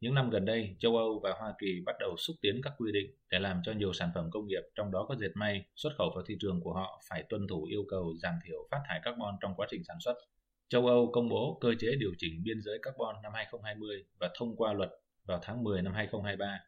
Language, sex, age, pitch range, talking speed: Vietnamese, male, 20-39, 95-120 Hz, 265 wpm